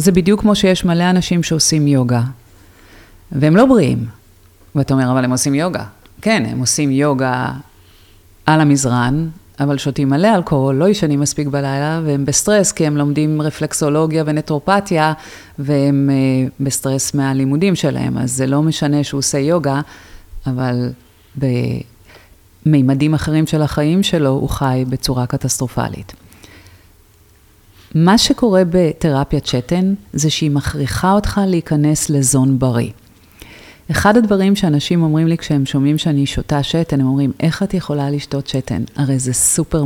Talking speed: 135 wpm